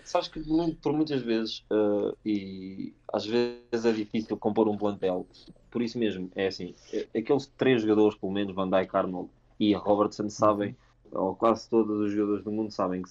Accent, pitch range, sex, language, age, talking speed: Portuguese, 100-115 Hz, male, Portuguese, 20-39, 180 wpm